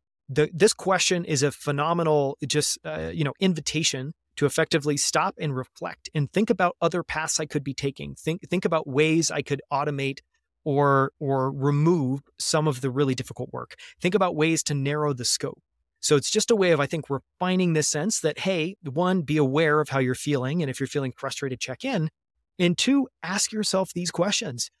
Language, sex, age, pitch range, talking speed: English, male, 30-49, 140-175 Hz, 195 wpm